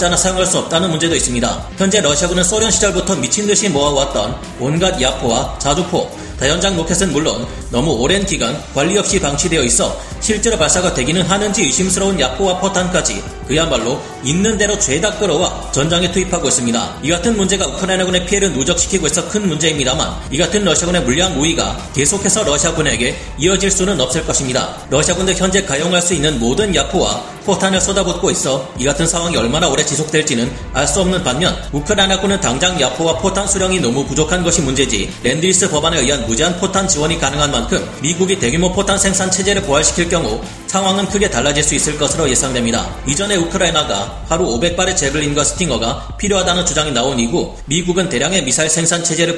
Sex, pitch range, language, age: male, 145-190 Hz, Korean, 30-49